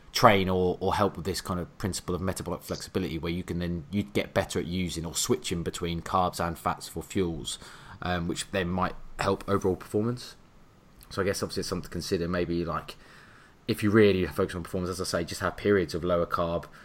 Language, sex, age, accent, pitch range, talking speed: English, male, 20-39, British, 85-95 Hz, 215 wpm